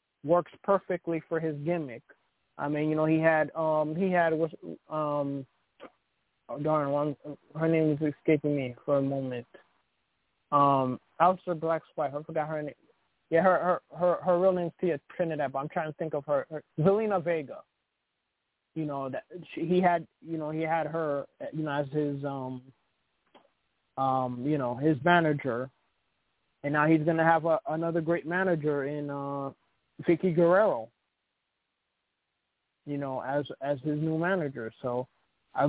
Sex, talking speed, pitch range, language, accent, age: male, 165 wpm, 140-170 Hz, English, American, 20-39